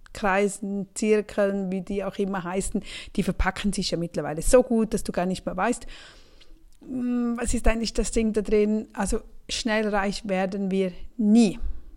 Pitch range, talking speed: 195-245 Hz, 165 wpm